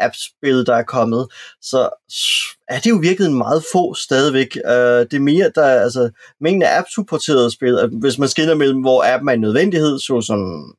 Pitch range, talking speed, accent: 120-140 Hz, 180 wpm, native